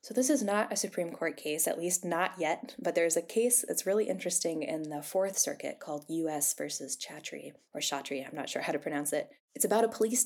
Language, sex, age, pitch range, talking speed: English, female, 10-29, 160-220 Hz, 235 wpm